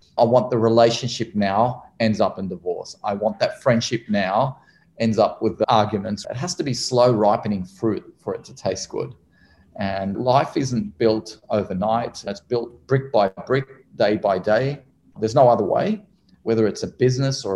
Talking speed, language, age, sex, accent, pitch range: 180 wpm, English, 30-49, male, Australian, 105-130 Hz